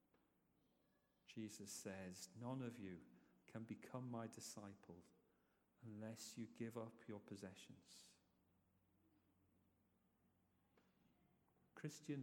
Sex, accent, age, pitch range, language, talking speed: male, British, 40-59, 105-125 Hz, English, 80 wpm